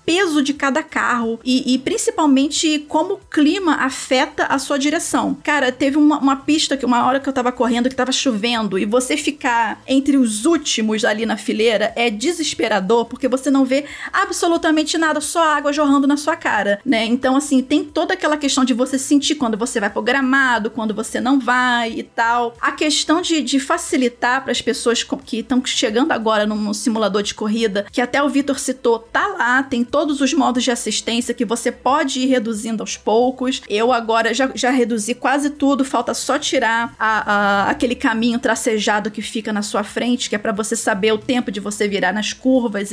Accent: Brazilian